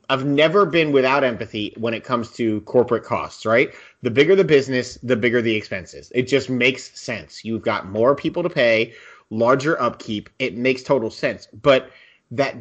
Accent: American